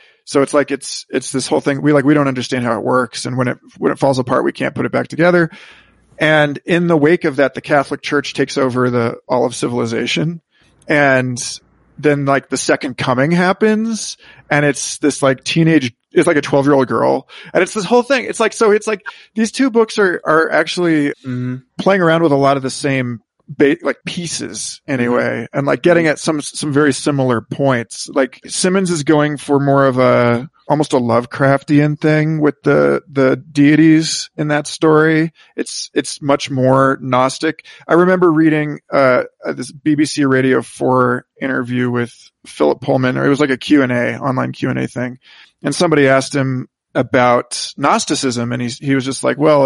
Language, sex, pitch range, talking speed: English, male, 130-155 Hz, 195 wpm